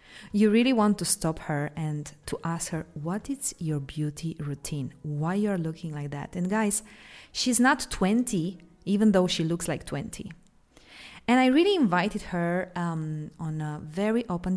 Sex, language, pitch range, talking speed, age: female, English, 160-210 Hz, 170 wpm, 30-49